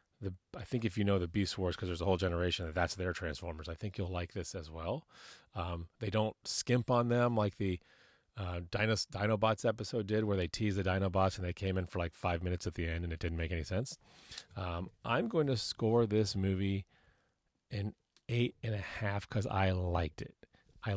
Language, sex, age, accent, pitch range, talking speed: English, male, 30-49, American, 90-110 Hz, 215 wpm